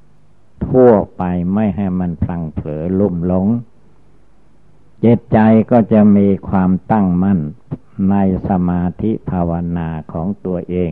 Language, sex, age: Thai, male, 60-79